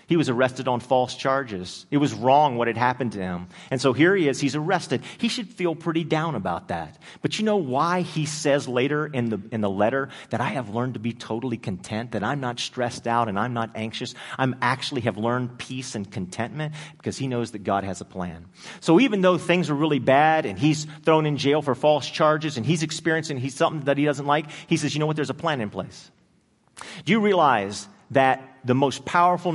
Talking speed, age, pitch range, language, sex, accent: 225 wpm, 40-59, 120-155 Hz, English, male, American